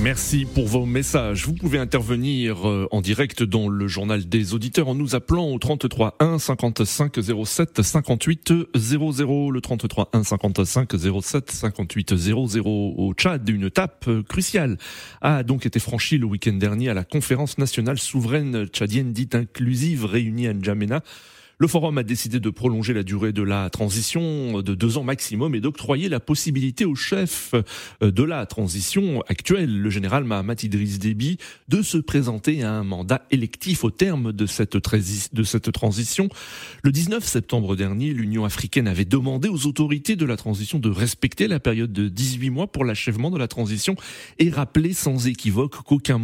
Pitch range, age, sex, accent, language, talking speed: 110-145 Hz, 30-49, male, French, French, 165 wpm